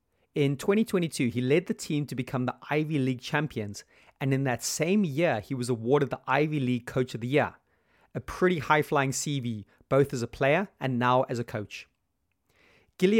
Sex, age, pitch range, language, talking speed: male, 30-49, 125-155 Hz, English, 185 wpm